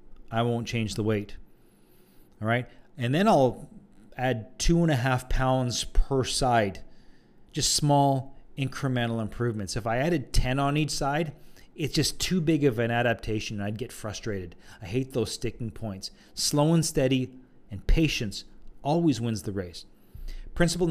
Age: 40-59